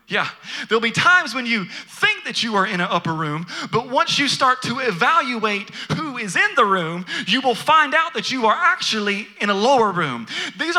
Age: 40-59